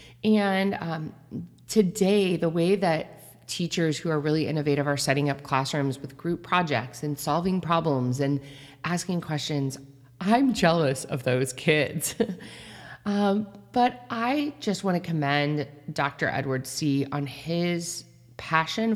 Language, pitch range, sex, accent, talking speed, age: English, 140-195 Hz, female, American, 135 wpm, 30-49